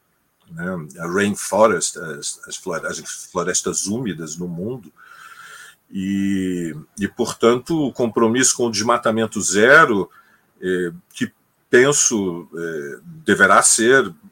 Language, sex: Portuguese, male